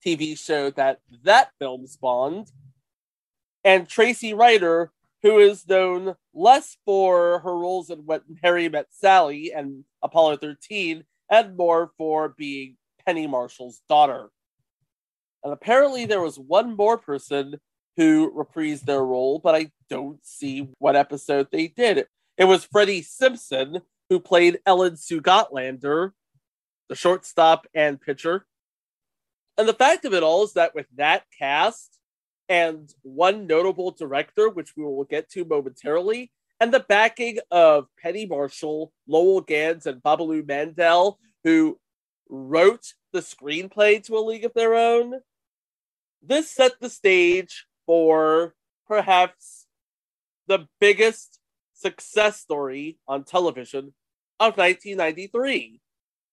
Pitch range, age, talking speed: 150-215 Hz, 30-49, 125 wpm